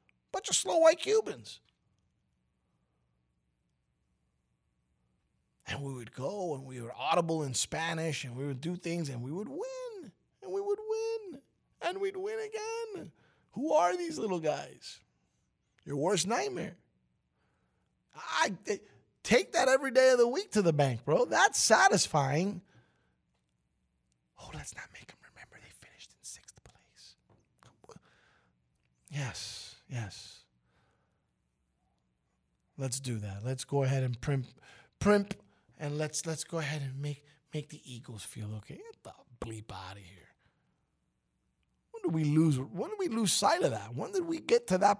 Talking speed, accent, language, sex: 150 wpm, American, English, male